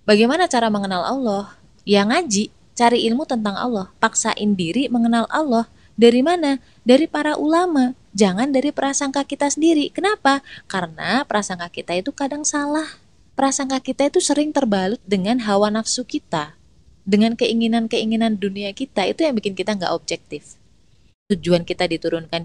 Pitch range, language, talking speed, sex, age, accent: 180-245 Hz, Indonesian, 140 wpm, female, 20-39, native